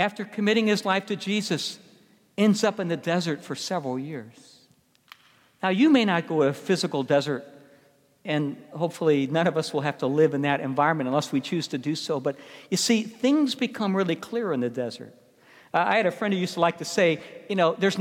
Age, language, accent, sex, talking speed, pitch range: 60-79, English, American, male, 215 wpm, 155-215 Hz